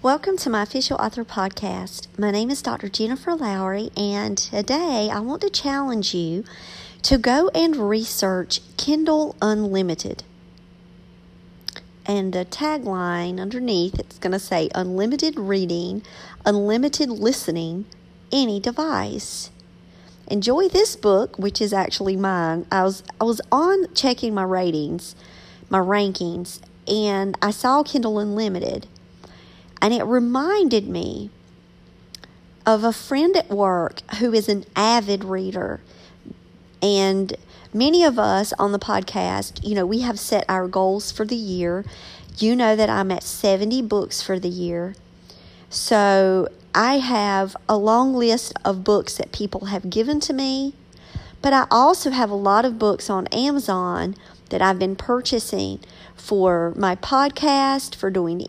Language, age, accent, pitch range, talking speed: English, 40-59, American, 190-250 Hz, 140 wpm